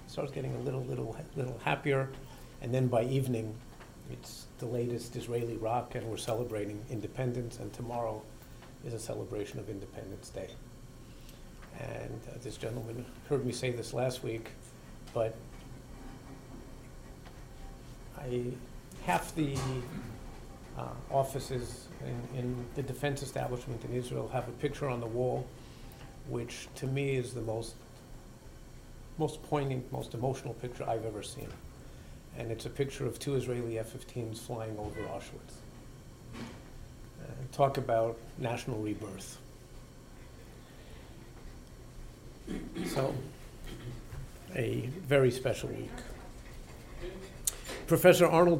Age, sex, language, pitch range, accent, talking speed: 50-69, male, English, 115-135 Hz, American, 115 wpm